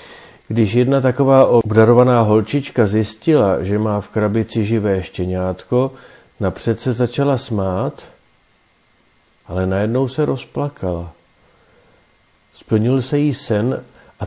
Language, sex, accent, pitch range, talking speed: Czech, male, native, 105-130 Hz, 105 wpm